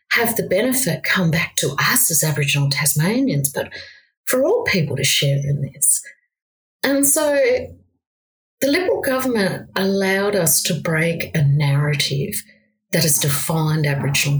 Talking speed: 140 wpm